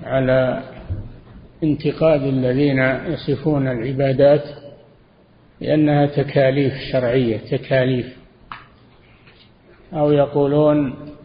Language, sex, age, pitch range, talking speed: Arabic, male, 50-69, 130-150 Hz, 60 wpm